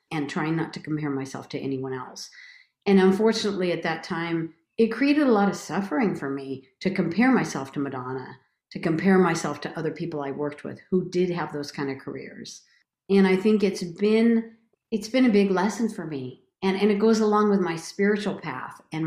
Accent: American